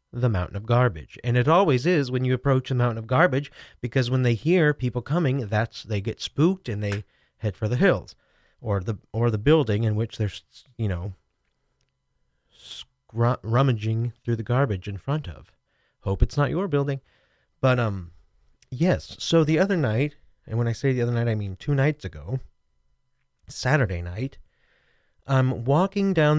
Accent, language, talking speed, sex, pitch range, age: American, English, 175 wpm, male, 105-140 Hz, 30-49